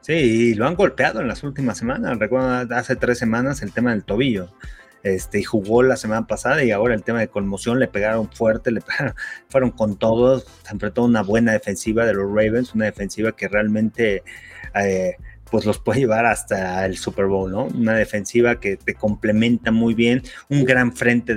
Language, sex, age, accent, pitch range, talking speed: Spanish, male, 30-49, Mexican, 105-125 Hz, 190 wpm